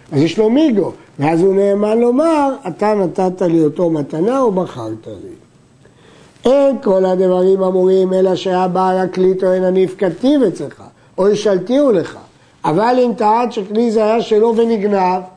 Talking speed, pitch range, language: 150 wpm, 180-235 Hz, Hebrew